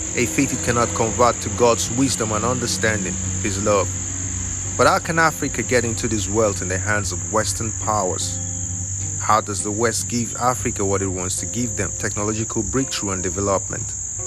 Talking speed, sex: 175 wpm, male